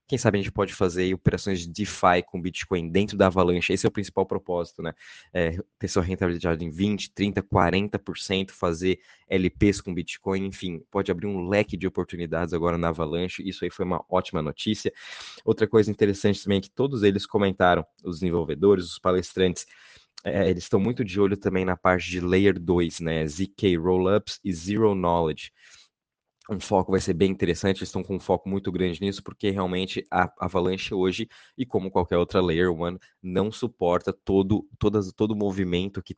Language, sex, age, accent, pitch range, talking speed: Portuguese, male, 20-39, Brazilian, 90-100 Hz, 180 wpm